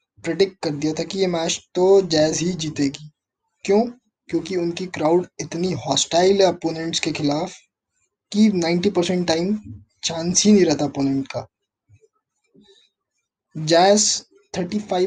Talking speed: 120 wpm